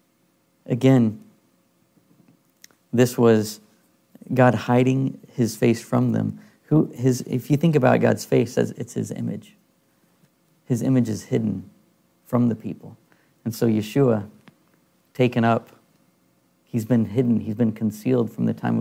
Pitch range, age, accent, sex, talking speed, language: 115-135 Hz, 40-59, American, male, 135 wpm, English